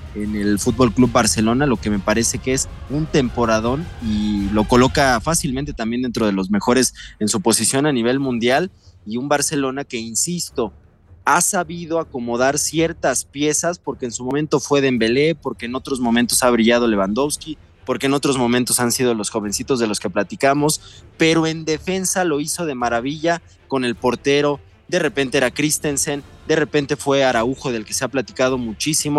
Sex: male